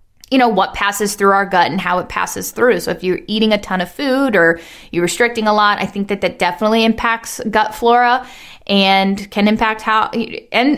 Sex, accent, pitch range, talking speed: female, American, 195-230 Hz, 210 wpm